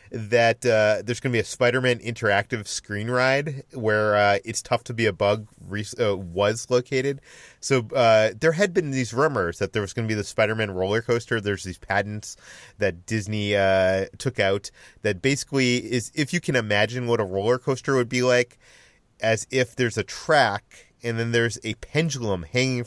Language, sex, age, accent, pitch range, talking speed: English, male, 30-49, American, 100-125 Hz, 190 wpm